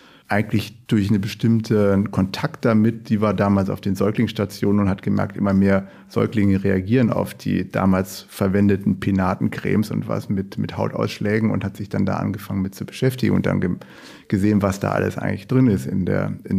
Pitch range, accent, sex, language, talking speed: 95-110 Hz, German, male, German, 185 wpm